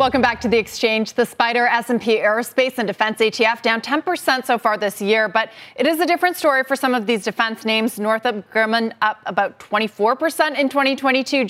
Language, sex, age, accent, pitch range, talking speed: English, female, 30-49, American, 220-270 Hz, 195 wpm